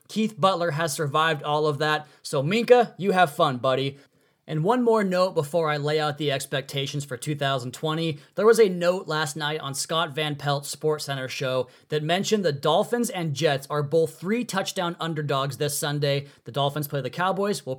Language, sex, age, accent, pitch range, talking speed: English, male, 20-39, American, 145-190 Hz, 190 wpm